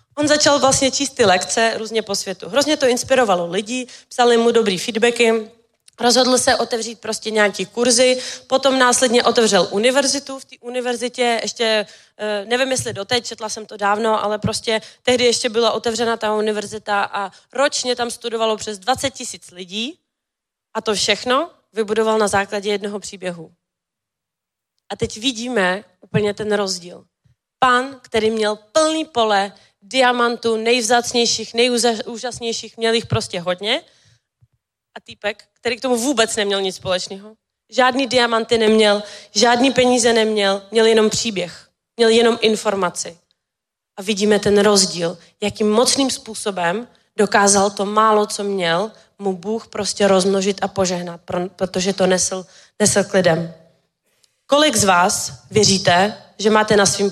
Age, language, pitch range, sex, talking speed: 20-39, Czech, 200-240 Hz, female, 140 wpm